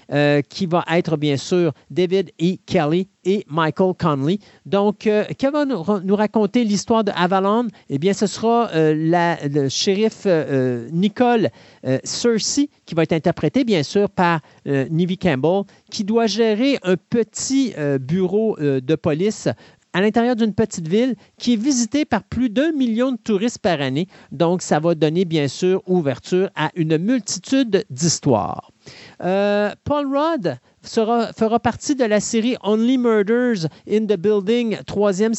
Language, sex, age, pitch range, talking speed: French, male, 50-69, 170-230 Hz, 160 wpm